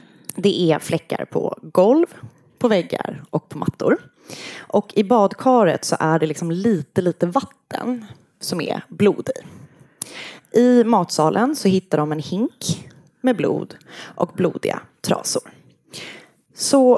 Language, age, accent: Swedish, 20-39, native